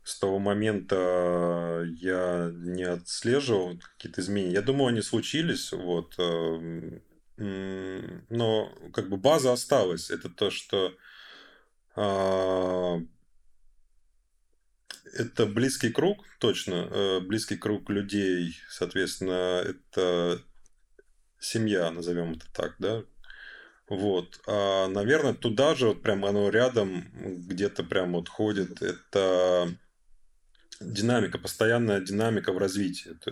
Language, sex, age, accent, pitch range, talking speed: Russian, male, 20-39, native, 85-105 Hz, 100 wpm